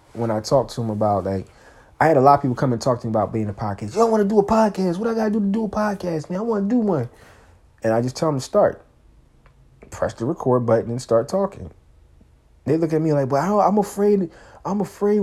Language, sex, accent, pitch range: English, male, American, 110-155 Hz